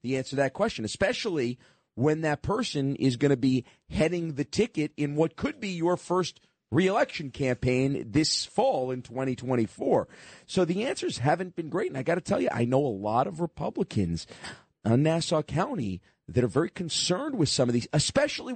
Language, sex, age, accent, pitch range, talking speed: English, male, 40-59, American, 120-175 Hz, 190 wpm